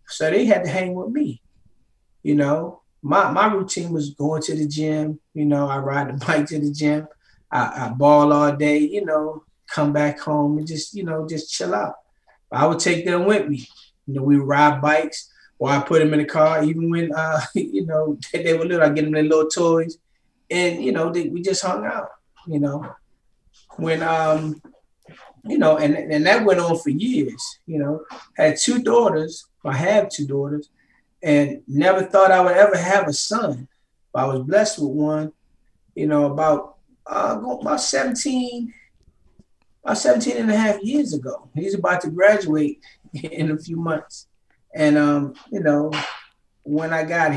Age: 20-39